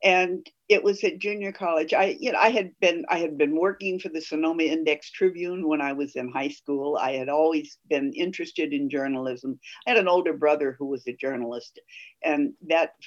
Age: 60-79